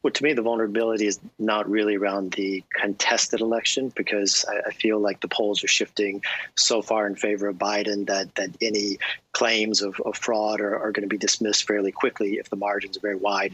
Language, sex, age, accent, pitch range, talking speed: English, male, 40-59, American, 100-105 Hz, 210 wpm